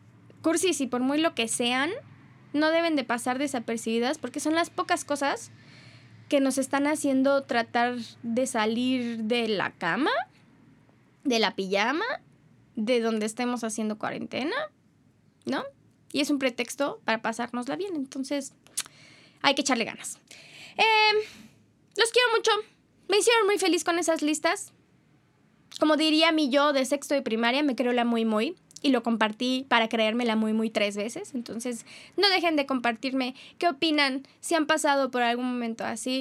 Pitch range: 230-295 Hz